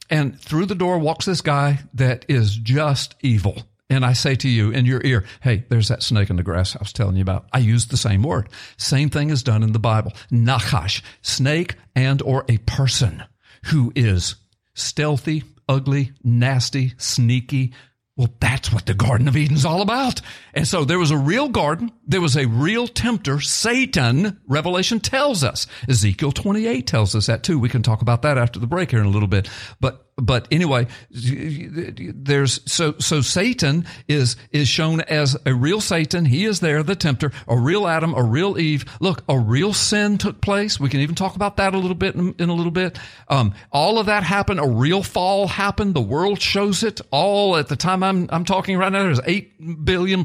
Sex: male